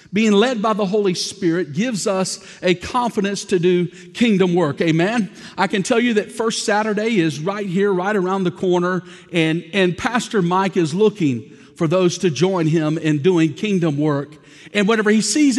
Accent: American